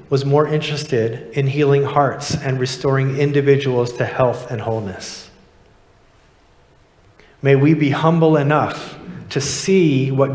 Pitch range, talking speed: 115-150 Hz, 120 wpm